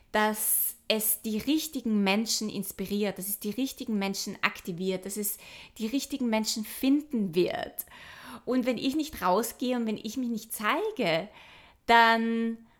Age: 20-39